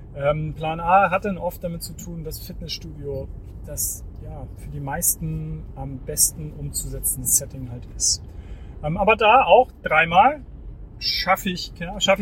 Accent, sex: German, male